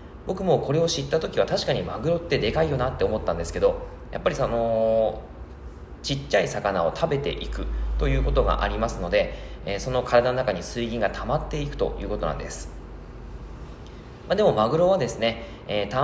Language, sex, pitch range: Japanese, male, 100-150 Hz